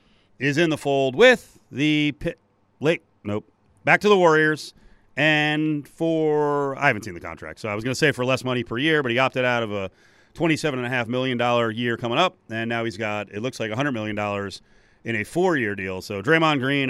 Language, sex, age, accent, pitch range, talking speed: English, male, 40-59, American, 105-145 Hz, 205 wpm